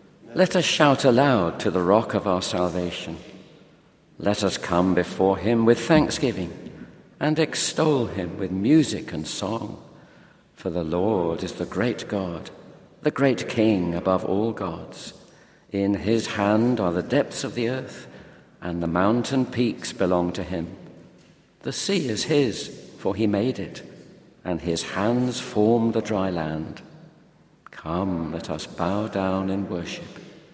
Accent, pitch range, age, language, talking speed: British, 90-115 Hz, 60-79, English, 145 wpm